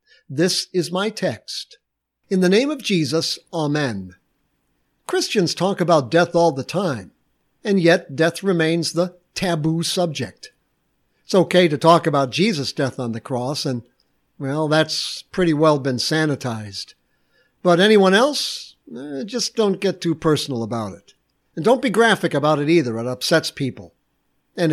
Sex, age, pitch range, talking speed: male, 60-79, 140-185 Hz, 155 wpm